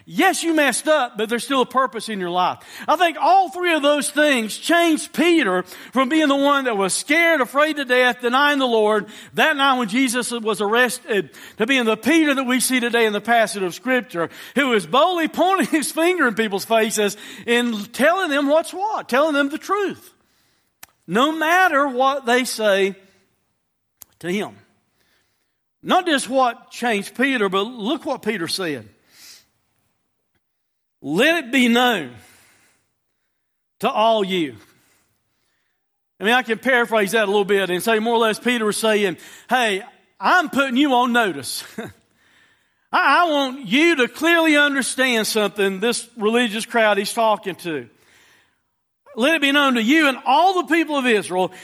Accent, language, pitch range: American, English, 220-290 Hz